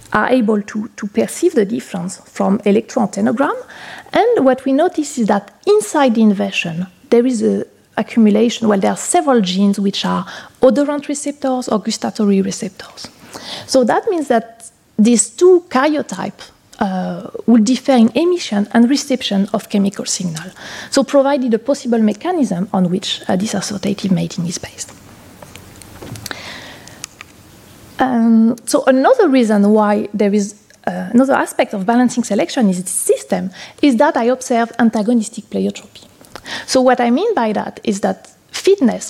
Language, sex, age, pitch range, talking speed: French, female, 30-49, 205-265 Hz, 145 wpm